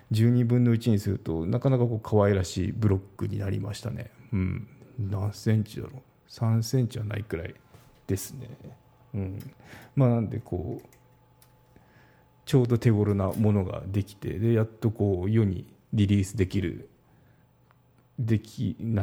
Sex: male